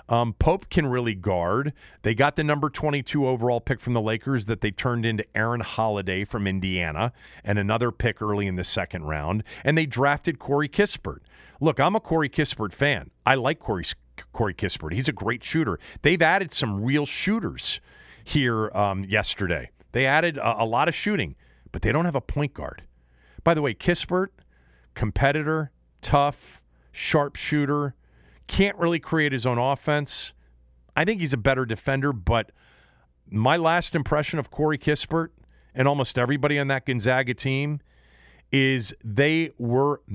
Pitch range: 105-145 Hz